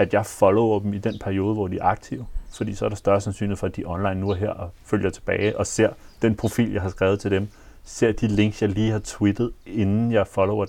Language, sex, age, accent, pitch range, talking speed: Danish, male, 30-49, native, 95-110 Hz, 260 wpm